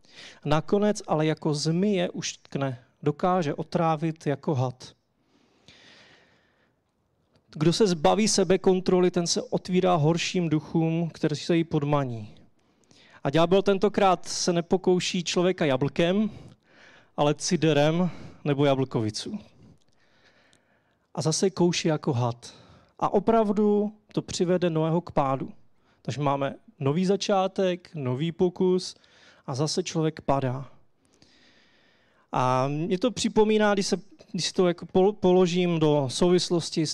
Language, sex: Czech, male